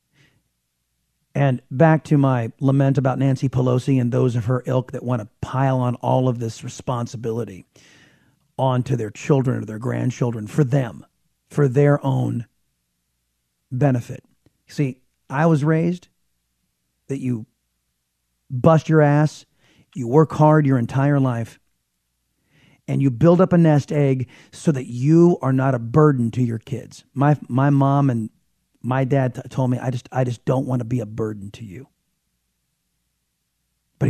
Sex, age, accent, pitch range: male, 40-59, American, 115-155 Hz